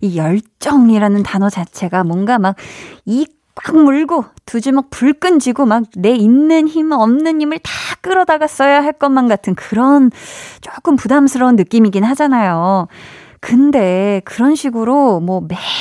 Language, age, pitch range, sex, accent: Korean, 20-39, 195-285 Hz, female, native